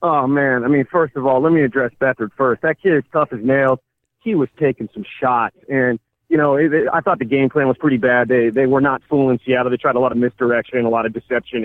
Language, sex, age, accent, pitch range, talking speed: English, male, 30-49, American, 125-170 Hz, 265 wpm